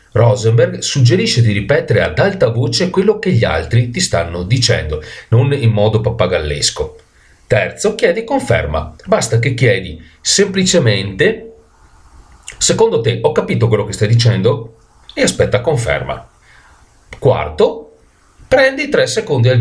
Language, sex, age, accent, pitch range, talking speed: Italian, male, 40-59, native, 100-150 Hz, 125 wpm